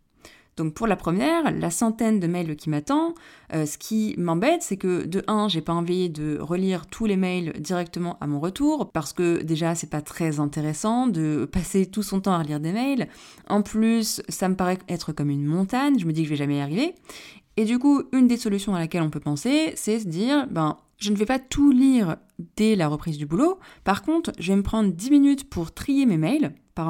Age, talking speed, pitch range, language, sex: 20-39, 230 wpm, 165-225 Hz, French, female